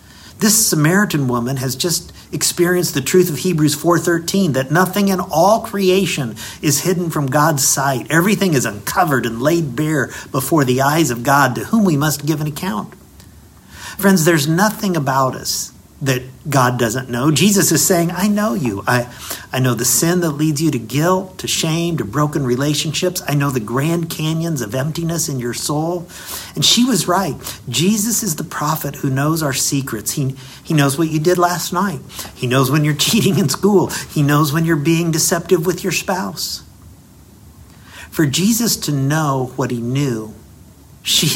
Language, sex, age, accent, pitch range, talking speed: English, male, 50-69, American, 130-170 Hz, 180 wpm